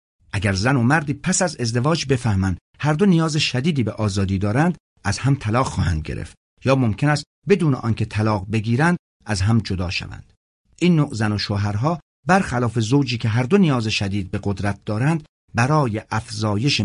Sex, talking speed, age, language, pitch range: male, 170 wpm, 50-69, Persian, 100-145 Hz